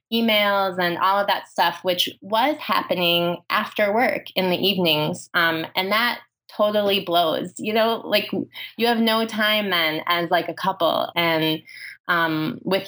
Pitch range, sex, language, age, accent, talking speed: 165-200 Hz, female, English, 20-39, American, 160 wpm